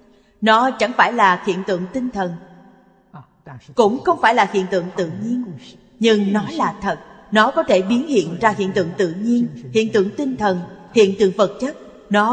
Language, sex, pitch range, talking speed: Vietnamese, female, 185-230 Hz, 190 wpm